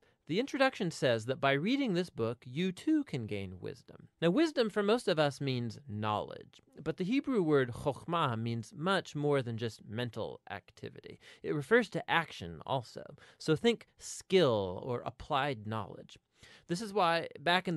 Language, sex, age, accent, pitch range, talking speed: English, male, 30-49, American, 110-165 Hz, 165 wpm